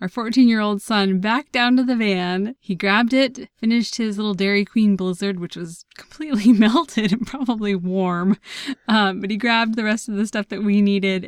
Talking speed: 200 wpm